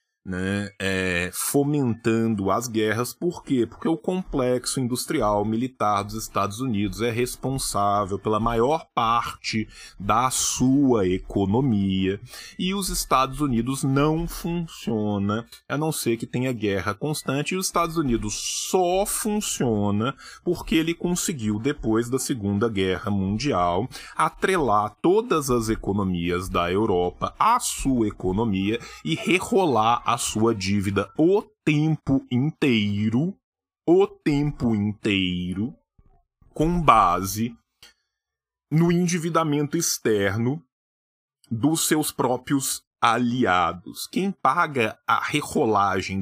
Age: 20-39